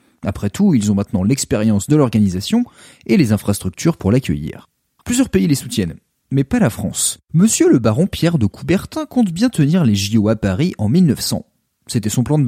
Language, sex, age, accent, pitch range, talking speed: French, male, 30-49, French, 105-165 Hz, 190 wpm